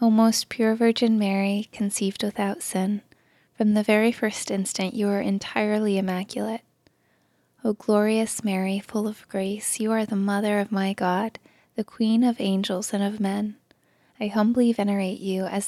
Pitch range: 195-215 Hz